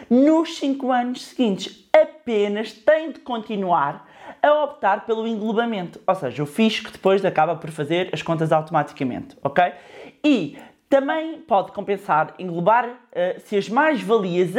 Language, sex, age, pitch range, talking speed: Portuguese, male, 20-39, 175-260 Hz, 145 wpm